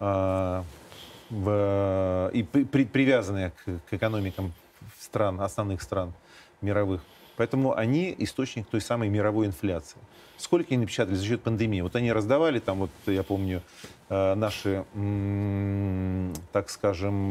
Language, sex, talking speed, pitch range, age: Russian, male, 125 wpm, 95-115 Hz, 40-59